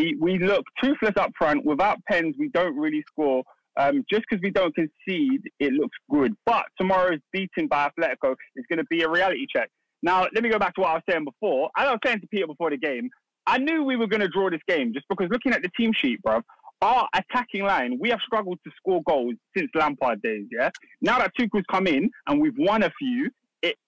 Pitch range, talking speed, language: 155-255 Hz, 230 wpm, English